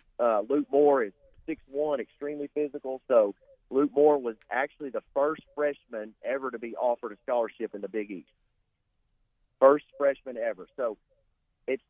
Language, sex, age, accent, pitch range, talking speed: English, male, 40-59, American, 120-145 Hz, 155 wpm